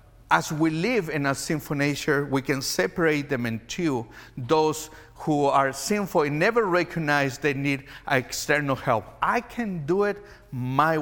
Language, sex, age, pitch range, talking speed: English, male, 50-69, 115-160 Hz, 150 wpm